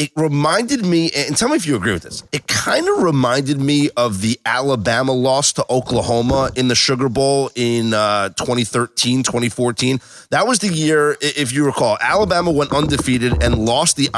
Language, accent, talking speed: English, American, 180 wpm